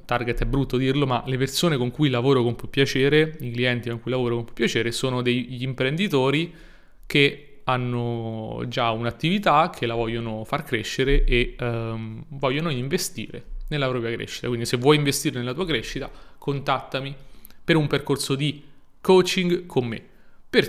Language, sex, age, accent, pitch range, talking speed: Italian, male, 30-49, native, 120-145 Hz, 160 wpm